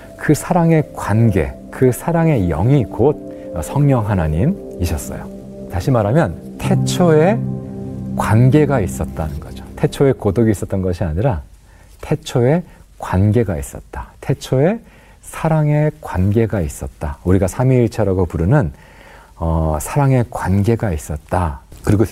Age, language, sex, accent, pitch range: 40-59, Korean, male, native, 85-130 Hz